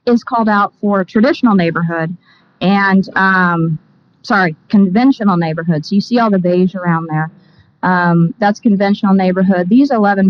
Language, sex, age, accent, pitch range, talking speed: English, female, 30-49, American, 180-210 Hz, 140 wpm